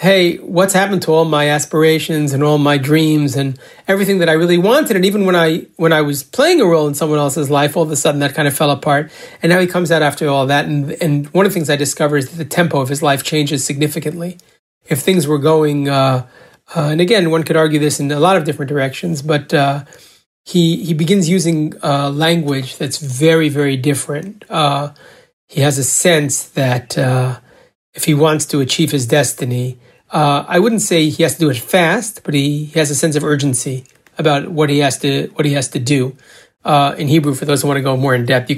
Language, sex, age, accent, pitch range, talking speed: English, male, 40-59, American, 140-160 Hz, 235 wpm